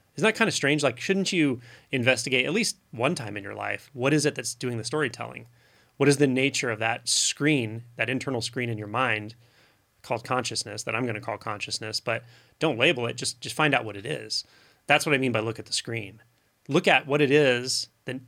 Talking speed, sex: 230 wpm, male